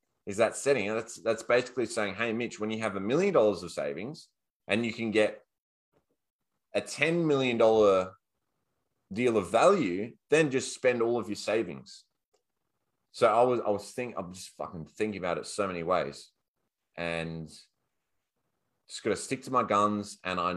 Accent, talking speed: Australian, 175 wpm